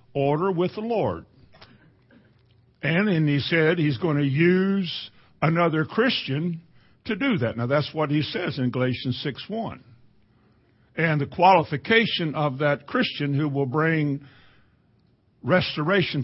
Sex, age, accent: male, 50-69, American